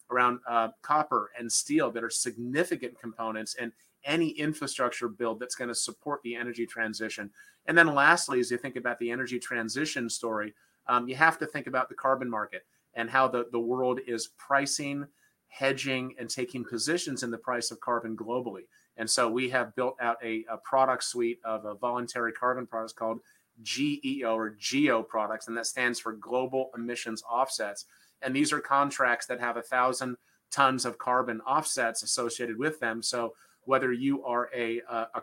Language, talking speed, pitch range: English, 180 wpm, 115-135 Hz